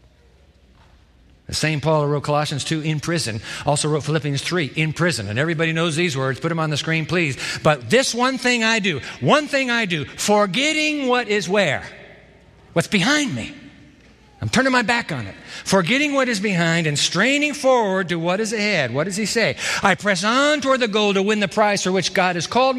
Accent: American